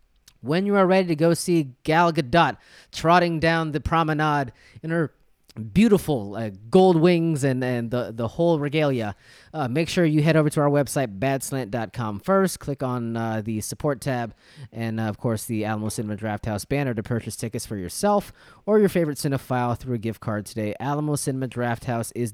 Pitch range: 110-145 Hz